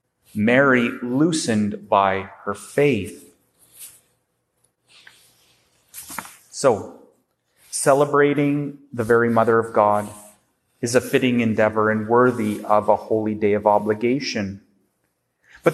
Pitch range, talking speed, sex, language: 110-145 Hz, 95 wpm, male, English